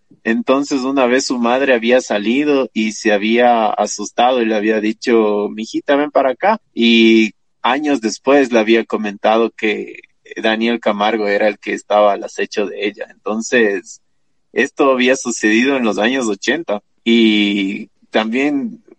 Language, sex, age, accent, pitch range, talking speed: Spanish, male, 20-39, Mexican, 110-130 Hz, 145 wpm